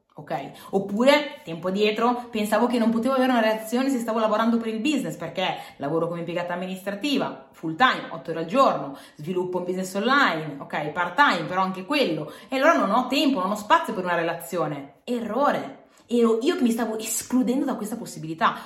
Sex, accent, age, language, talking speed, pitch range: female, native, 30-49, Italian, 190 wpm, 175-255 Hz